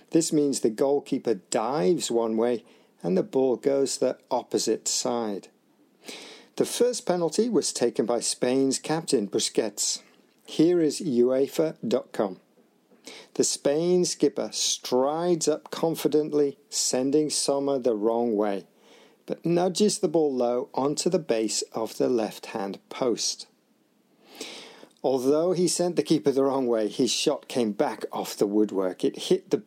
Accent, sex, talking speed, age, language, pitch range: British, male, 135 wpm, 50-69, English, 120-160 Hz